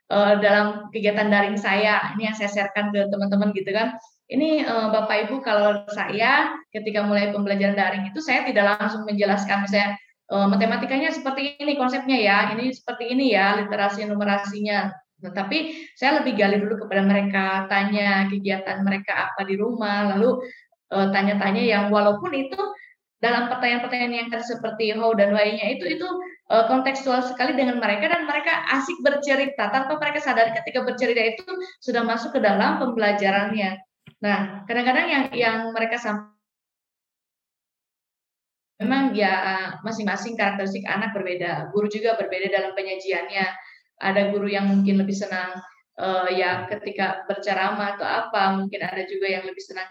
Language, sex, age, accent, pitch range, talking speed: Indonesian, female, 20-39, native, 200-250 Hz, 140 wpm